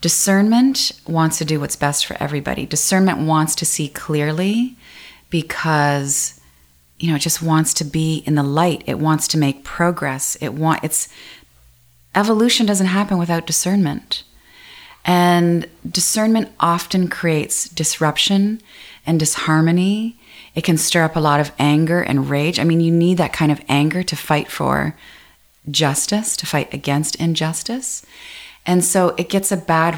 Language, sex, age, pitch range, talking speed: English, female, 30-49, 155-195 Hz, 150 wpm